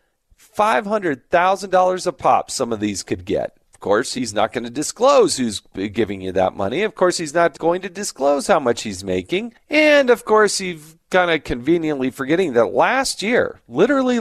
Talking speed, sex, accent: 180 wpm, male, American